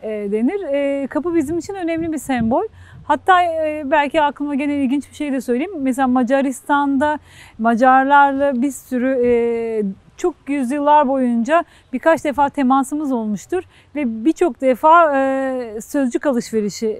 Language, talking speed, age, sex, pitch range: Turkish, 120 wpm, 40-59, female, 245-310 Hz